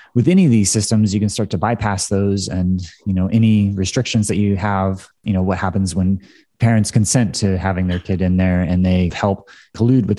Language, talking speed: English, 220 wpm